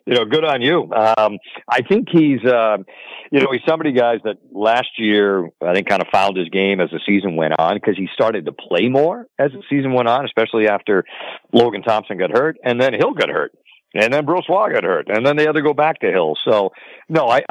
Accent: American